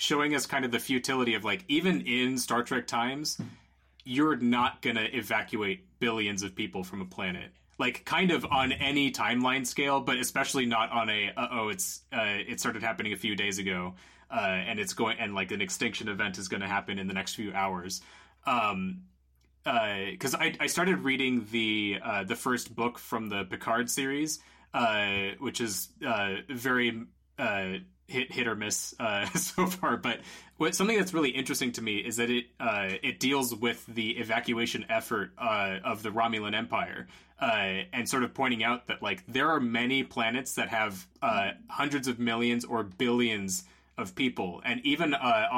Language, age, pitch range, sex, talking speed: English, 30-49, 95-125 Hz, male, 185 wpm